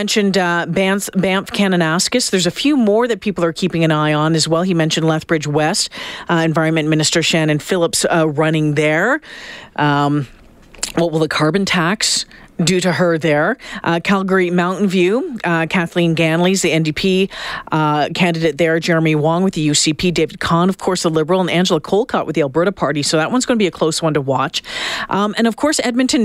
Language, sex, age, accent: English, female, 40-59, American